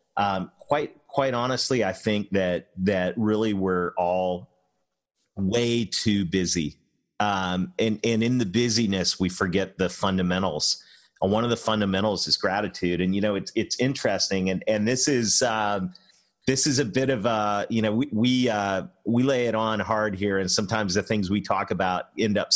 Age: 40-59